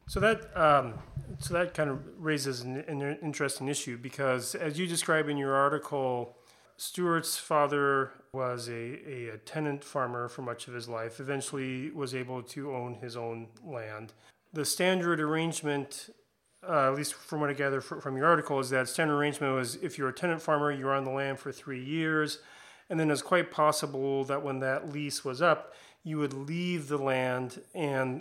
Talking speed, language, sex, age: 185 wpm, English, male, 30-49